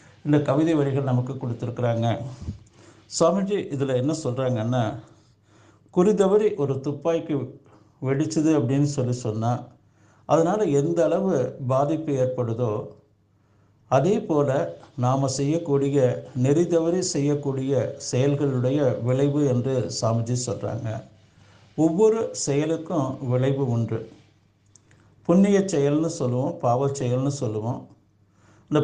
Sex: male